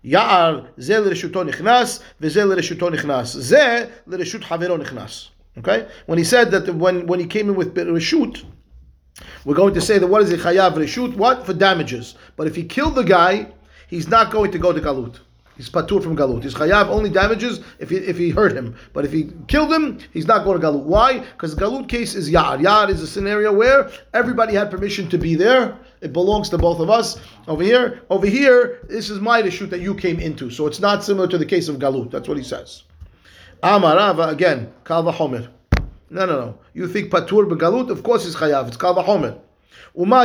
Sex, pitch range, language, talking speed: male, 160-220 Hz, English, 195 wpm